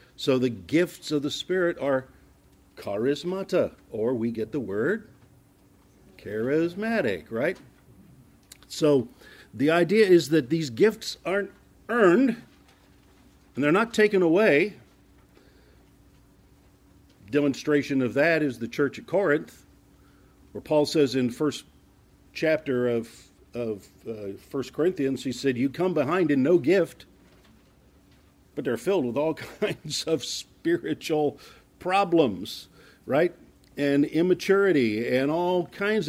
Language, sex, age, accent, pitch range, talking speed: English, male, 50-69, American, 115-180 Hz, 120 wpm